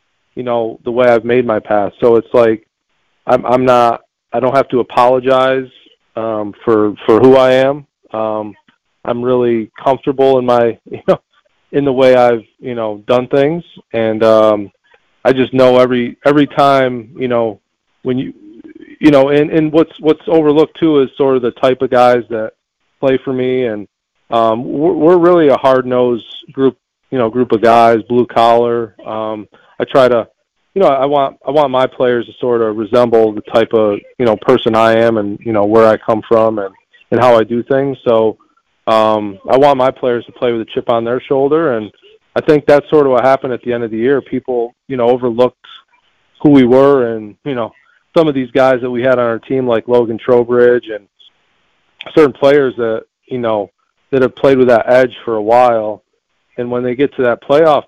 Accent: American